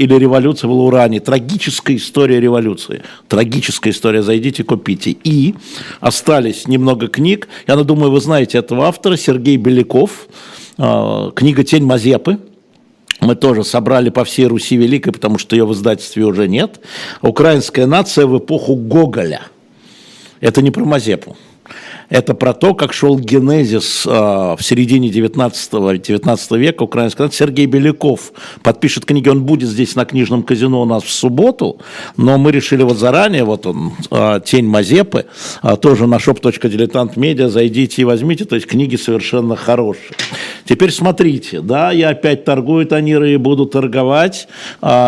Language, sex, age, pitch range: Russian, male, 60-79, 120-145 Hz